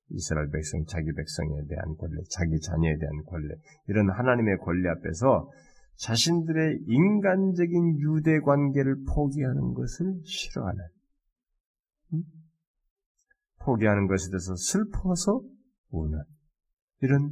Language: Korean